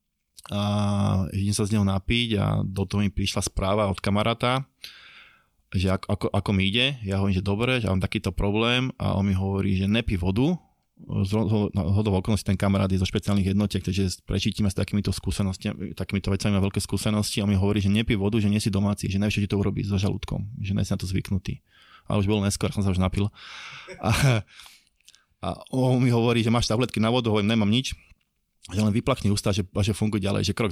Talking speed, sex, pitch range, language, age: 205 wpm, male, 95-115 Hz, Slovak, 20-39